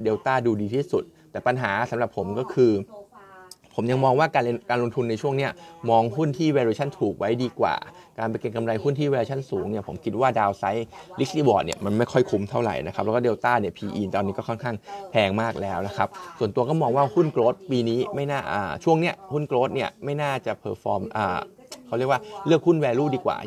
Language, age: Thai, 20-39